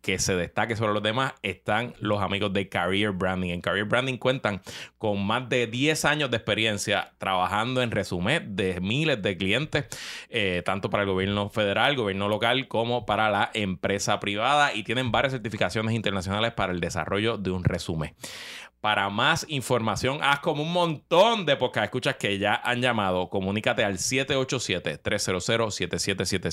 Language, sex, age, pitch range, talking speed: Spanish, male, 30-49, 95-125 Hz, 165 wpm